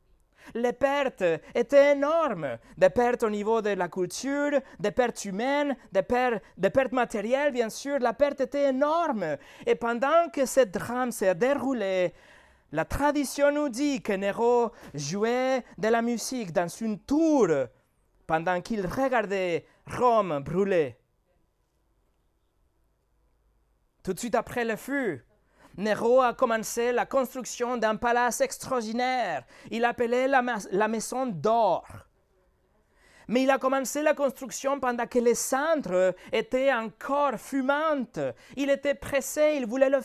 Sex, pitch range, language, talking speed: male, 210-270 Hz, French, 135 wpm